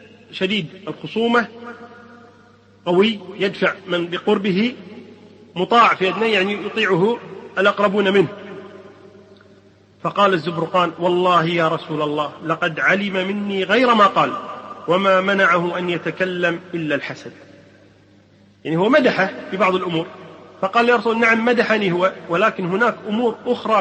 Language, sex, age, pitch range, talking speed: Arabic, male, 40-59, 170-210 Hz, 120 wpm